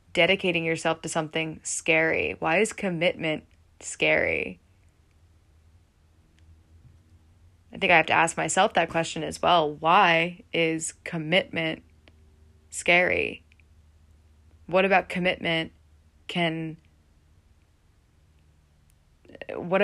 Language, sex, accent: English, female, American